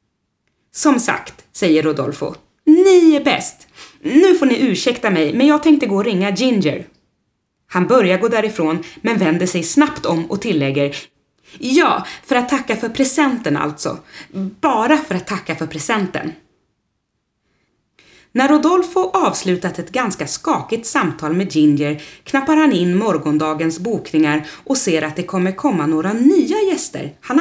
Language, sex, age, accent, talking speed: Swedish, female, 30-49, native, 145 wpm